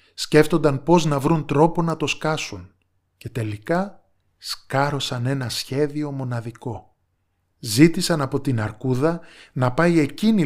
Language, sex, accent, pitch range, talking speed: Greek, male, native, 110-155 Hz, 120 wpm